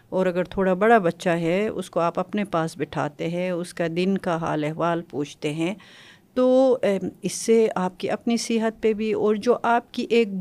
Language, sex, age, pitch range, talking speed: Urdu, female, 50-69, 165-205 Hz, 200 wpm